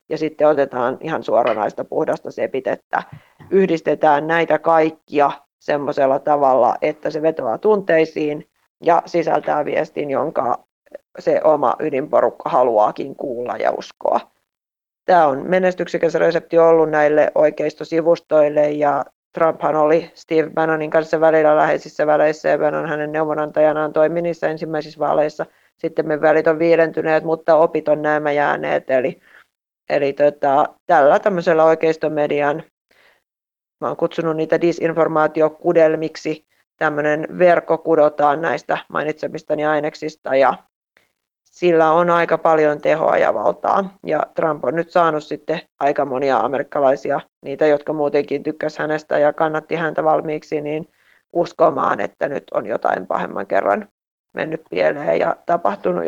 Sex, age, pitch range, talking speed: female, 30-49, 150-165 Hz, 120 wpm